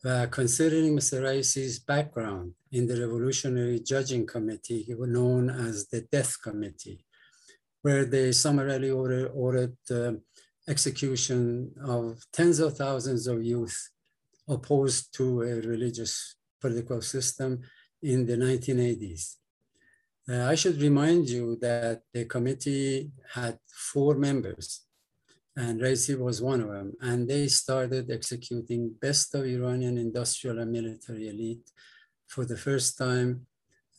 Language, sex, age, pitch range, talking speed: Persian, male, 50-69, 115-135 Hz, 120 wpm